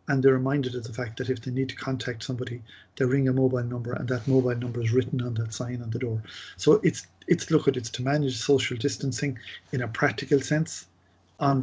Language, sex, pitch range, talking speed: English, male, 125-140 Hz, 230 wpm